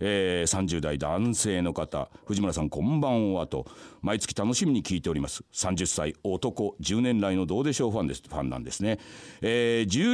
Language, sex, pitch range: Japanese, male, 90-120 Hz